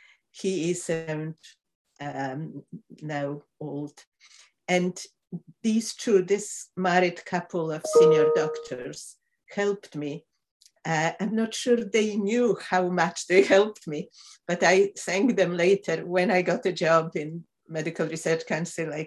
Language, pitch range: English, 165-195 Hz